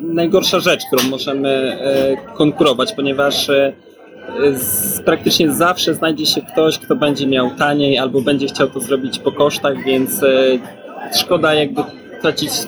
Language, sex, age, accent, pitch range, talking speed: Polish, male, 20-39, native, 135-160 Hz, 125 wpm